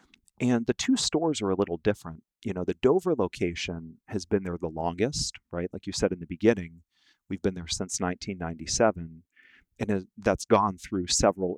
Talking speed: 180 wpm